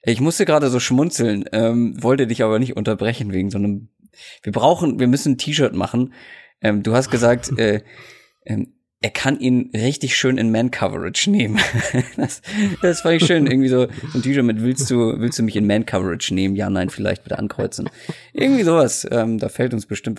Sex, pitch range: male, 115-155 Hz